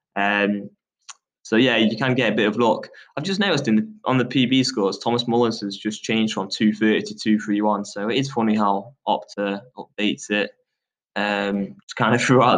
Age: 10-29